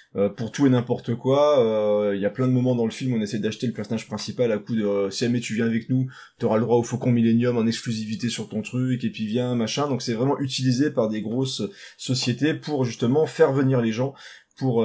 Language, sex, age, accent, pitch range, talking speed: French, male, 20-39, French, 115-140 Hz, 260 wpm